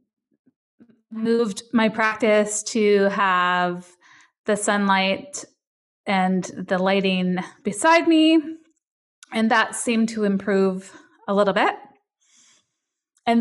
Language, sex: English, female